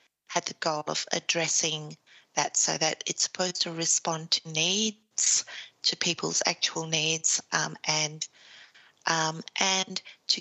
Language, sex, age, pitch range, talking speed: English, female, 30-49, 155-175 Hz, 135 wpm